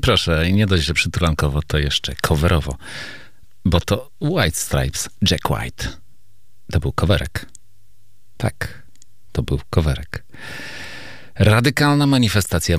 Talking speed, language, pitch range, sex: 110 wpm, Polish, 75-100 Hz, male